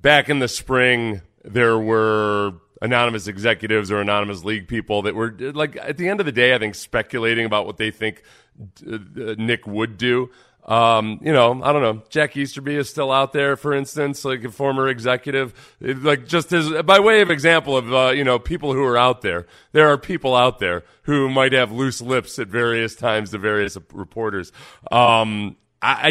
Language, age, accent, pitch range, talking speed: English, 40-59, American, 120-165 Hz, 195 wpm